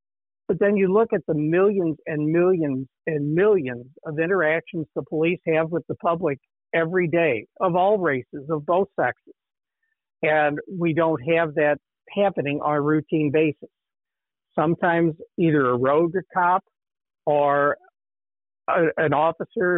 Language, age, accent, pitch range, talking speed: English, 60-79, American, 145-170 Hz, 135 wpm